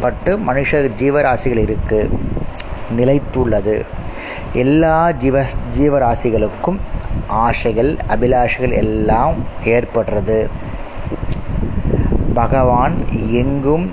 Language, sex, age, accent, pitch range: Tamil, male, 30-49, native, 110-135 Hz